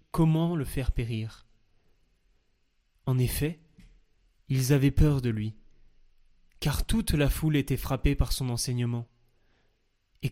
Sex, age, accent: male, 20-39, French